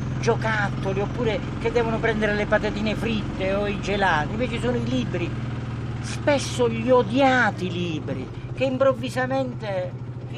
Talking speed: 125 wpm